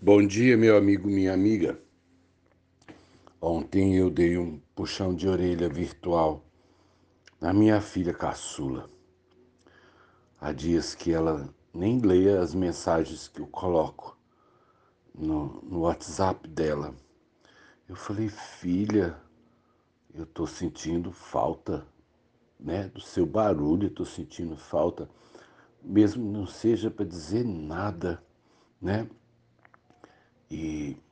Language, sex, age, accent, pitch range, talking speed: Portuguese, male, 60-79, Brazilian, 80-100 Hz, 110 wpm